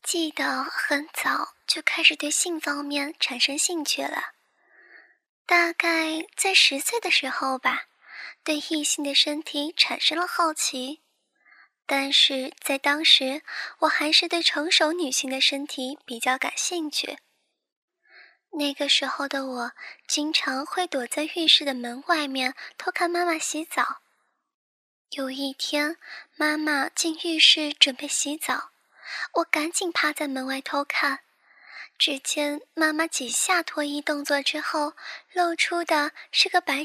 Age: 10-29